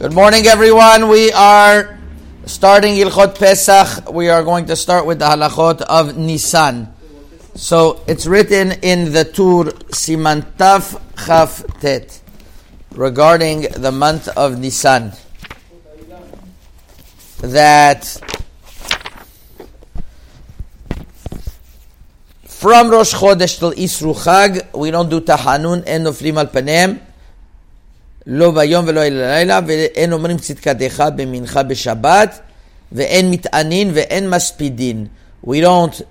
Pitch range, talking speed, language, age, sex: 130-175 Hz, 80 wpm, English, 50-69, male